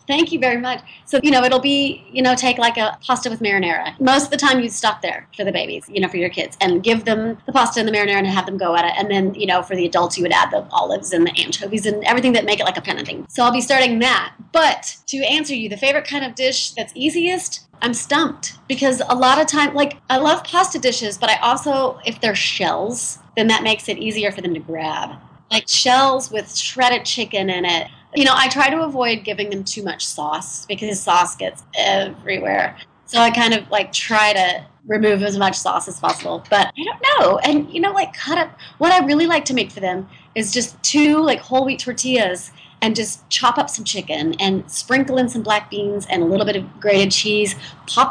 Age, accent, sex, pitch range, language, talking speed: 30-49, American, female, 195-260 Hz, English, 245 wpm